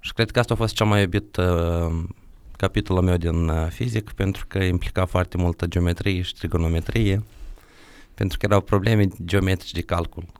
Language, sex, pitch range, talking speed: Romanian, male, 90-110 Hz, 175 wpm